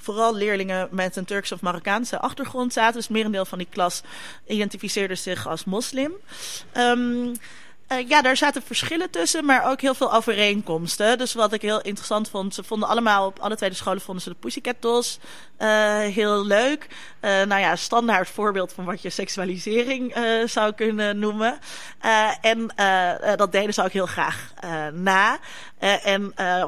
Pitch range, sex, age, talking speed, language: 185-230 Hz, female, 30-49, 175 wpm, Dutch